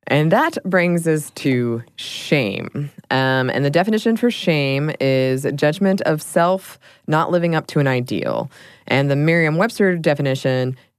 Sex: female